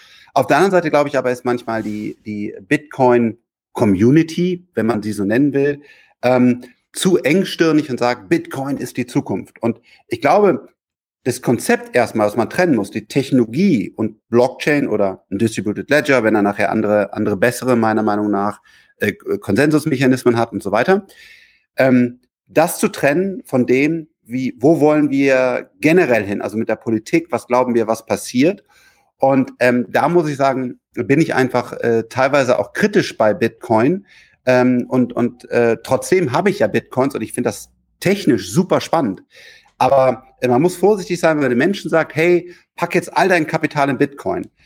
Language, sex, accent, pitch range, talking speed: German, male, German, 115-165 Hz, 175 wpm